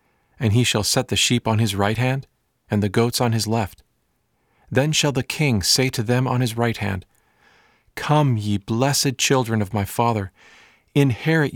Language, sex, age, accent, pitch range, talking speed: English, male, 40-59, American, 110-140 Hz, 180 wpm